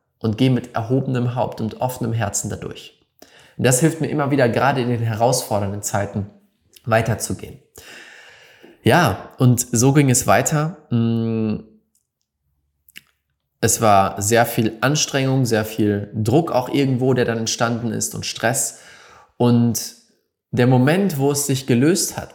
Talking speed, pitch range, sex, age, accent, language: 135 wpm, 110-140 Hz, male, 20-39, German, German